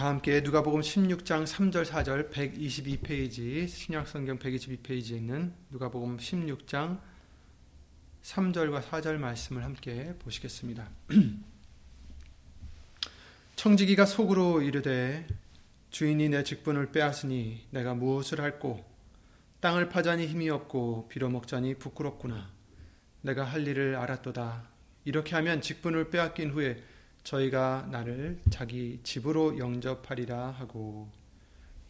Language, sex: Korean, male